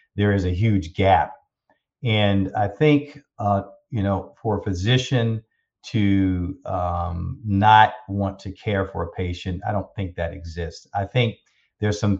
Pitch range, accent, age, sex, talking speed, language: 95-105 Hz, American, 40-59, male, 155 wpm, English